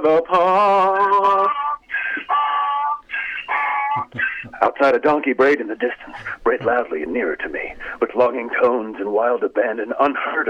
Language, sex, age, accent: English, male, 50-69, American